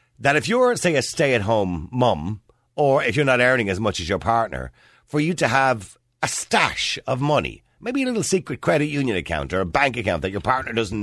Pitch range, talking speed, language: 90-150 Hz, 220 wpm, English